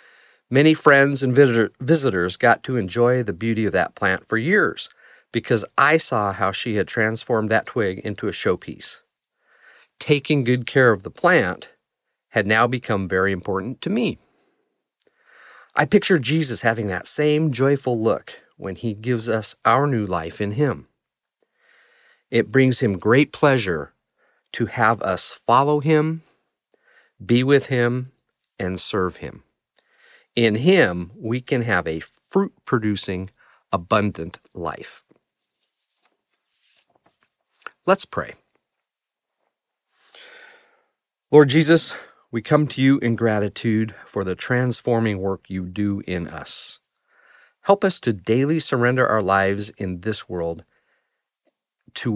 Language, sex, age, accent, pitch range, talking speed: English, male, 40-59, American, 100-140 Hz, 130 wpm